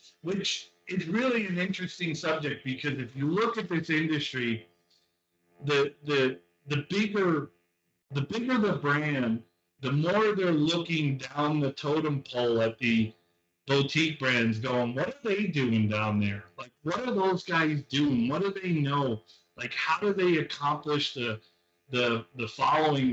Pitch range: 115-165 Hz